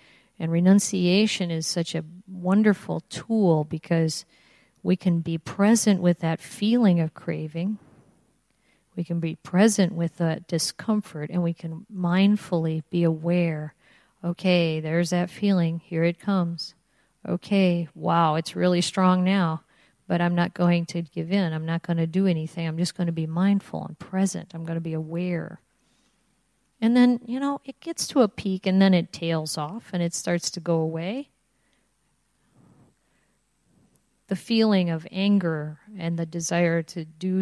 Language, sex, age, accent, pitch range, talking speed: English, female, 50-69, American, 165-195 Hz, 155 wpm